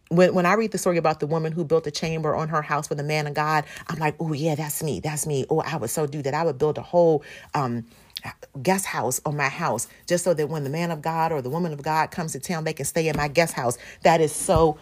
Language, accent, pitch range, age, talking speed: English, American, 155-195 Hz, 40-59, 290 wpm